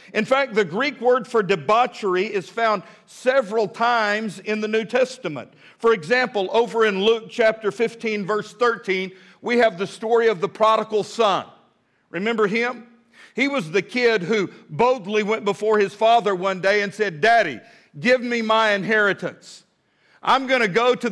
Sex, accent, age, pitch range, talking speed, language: male, American, 50-69, 205-245 Hz, 165 wpm, English